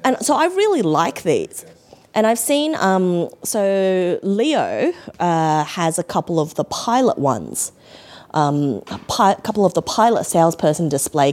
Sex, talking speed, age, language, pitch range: female, 145 wpm, 20-39, English, 150-195 Hz